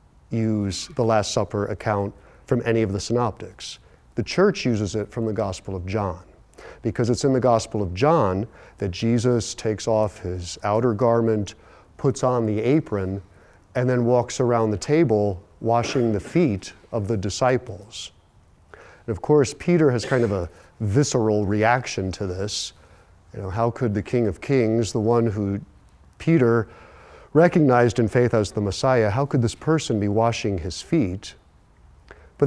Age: 40-59